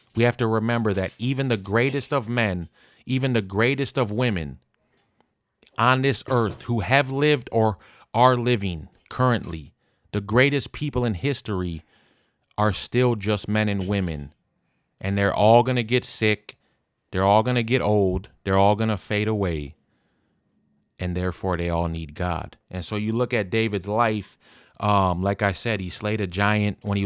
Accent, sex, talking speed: American, male, 175 wpm